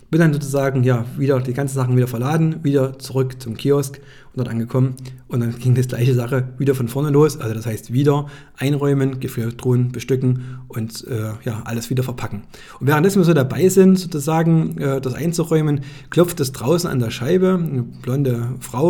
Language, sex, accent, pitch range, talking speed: German, male, German, 125-155 Hz, 195 wpm